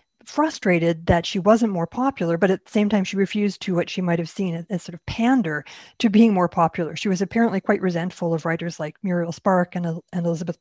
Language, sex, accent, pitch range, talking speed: English, female, American, 175-210 Hz, 230 wpm